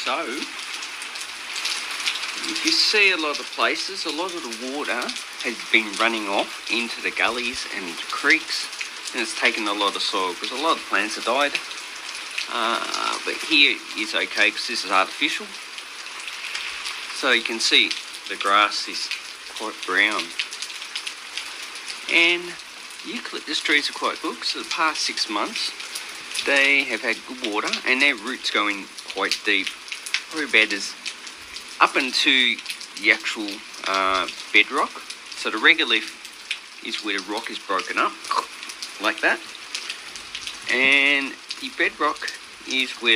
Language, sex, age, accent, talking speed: English, male, 40-59, Australian, 145 wpm